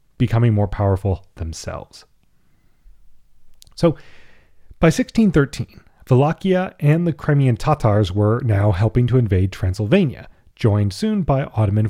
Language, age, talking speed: English, 30-49, 110 wpm